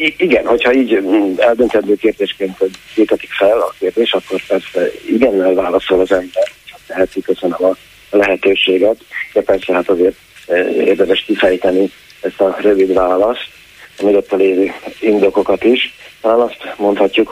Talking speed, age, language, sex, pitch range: 135 wpm, 40-59, Hungarian, male, 95-115 Hz